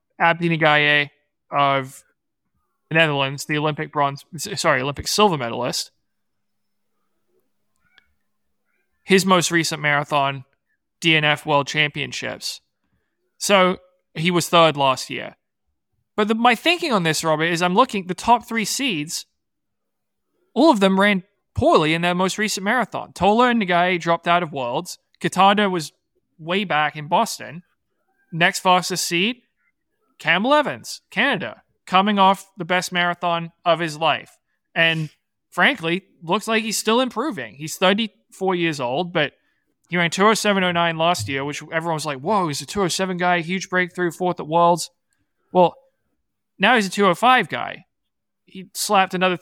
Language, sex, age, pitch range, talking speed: English, male, 20-39, 155-200 Hz, 140 wpm